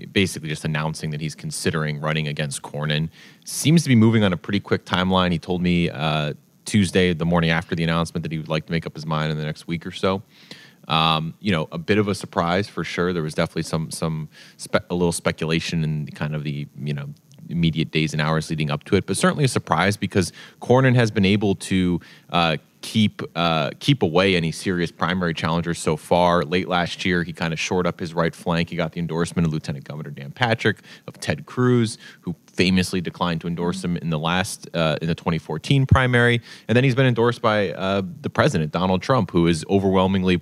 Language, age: English, 30-49